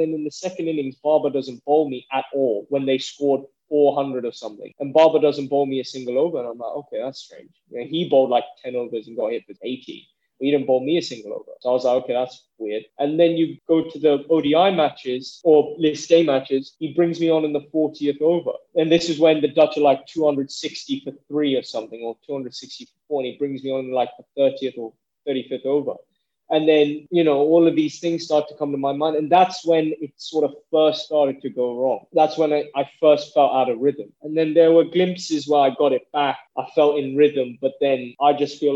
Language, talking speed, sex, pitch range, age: English, 250 wpm, male, 130-155 Hz, 20-39